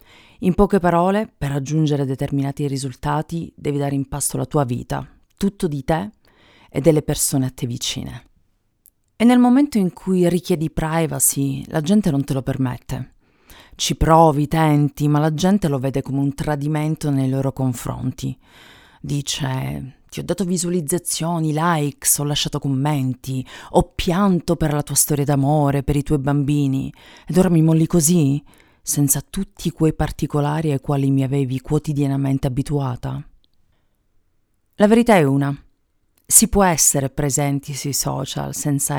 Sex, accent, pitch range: female, native, 135-160 Hz